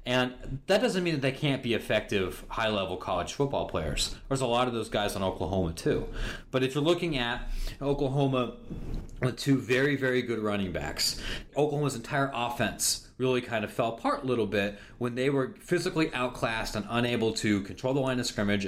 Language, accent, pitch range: English, American, 105-135 Hz